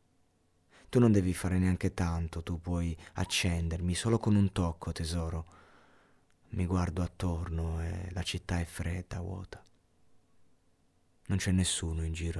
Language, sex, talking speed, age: Italian, male, 135 wpm, 30-49